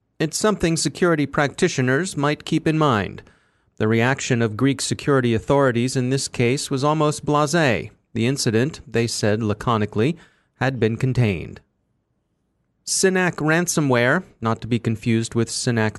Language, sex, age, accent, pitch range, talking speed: English, male, 30-49, American, 115-145 Hz, 135 wpm